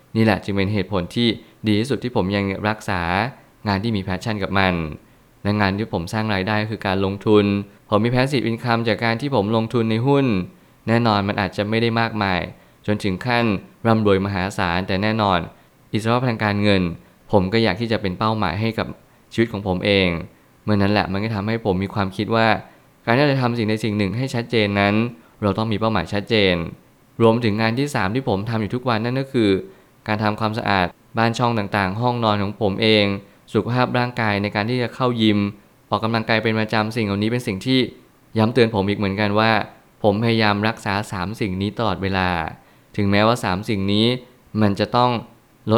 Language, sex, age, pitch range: Thai, male, 20-39, 100-115 Hz